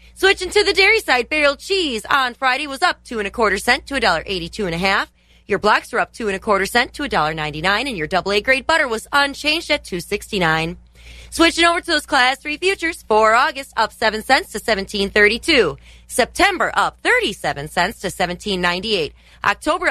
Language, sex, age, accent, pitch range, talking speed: English, female, 30-49, American, 205-305 Hz, 200 wpm